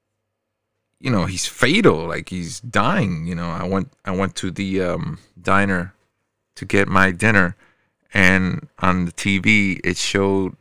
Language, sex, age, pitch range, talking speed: English, male, 30-49, 95-105 Hz, 155 wpm